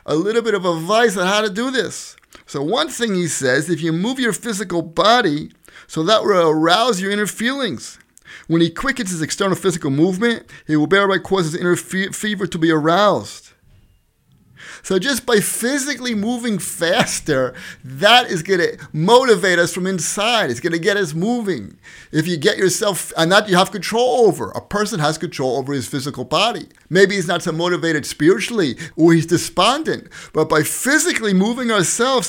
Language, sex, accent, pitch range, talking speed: English, male, American, 160-220 Hz, 180 wpm